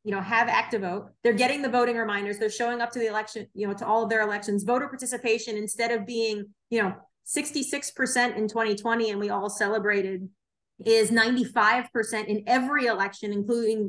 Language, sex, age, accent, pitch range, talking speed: English, female, 30-49, American, 205-240 Hz, 185 wpm